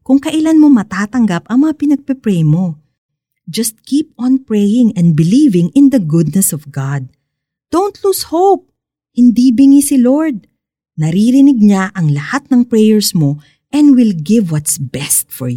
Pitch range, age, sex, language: 155-255 Hz, 40-59, female, Filipino